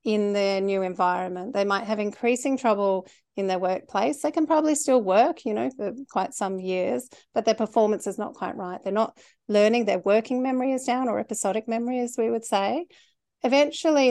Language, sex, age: English, female, 40-59